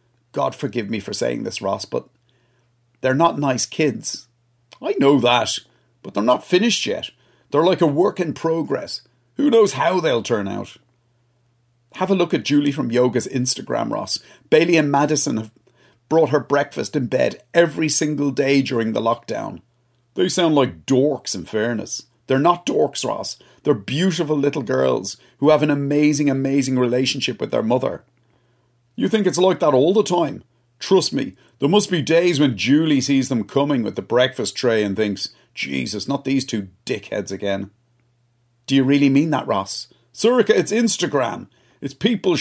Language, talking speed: English, 170 wpm